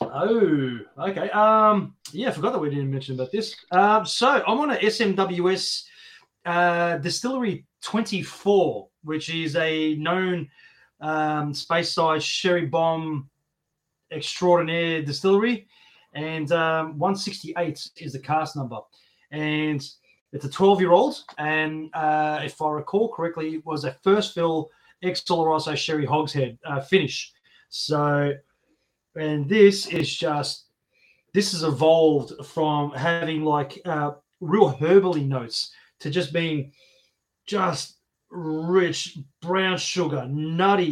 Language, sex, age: English, male, 20-39